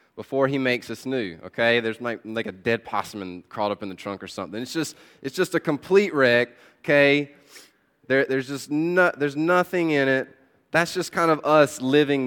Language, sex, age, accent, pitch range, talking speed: English, male, 20-39, American, 130-170 Hz, 205 wpm